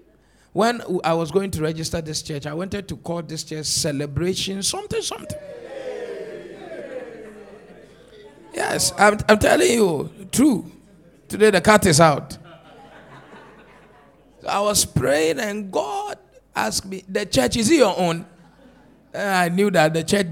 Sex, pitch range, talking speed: male, 165-235 Hz, 135 wpm